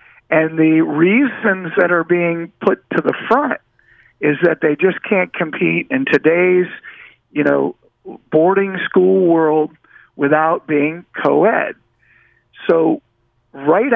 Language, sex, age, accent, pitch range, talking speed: English, male, 50-69, American, 155-195 Hz, 120 wpm